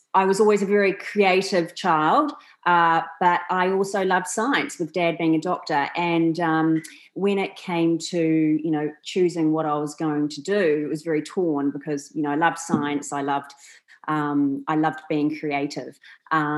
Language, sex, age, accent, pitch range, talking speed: English, female, 30-49, Australian, 150-175 Hz, 180 wpm